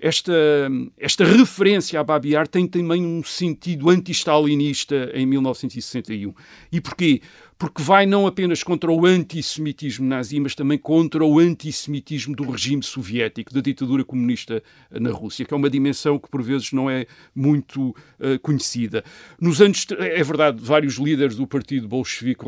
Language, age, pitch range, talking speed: Portuguese, 50-69, 135-165 Hz, 150 wpm